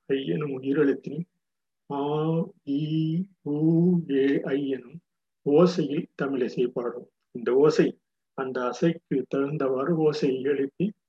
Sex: male